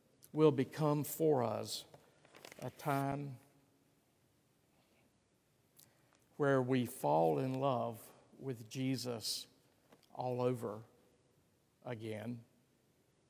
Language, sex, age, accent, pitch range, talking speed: English, male, 50-69, American, 120-140 Hz, 70 wpm